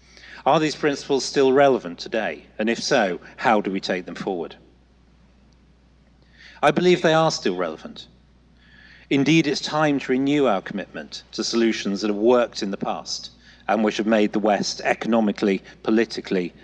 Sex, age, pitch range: male, 40-59, 95-135 Hz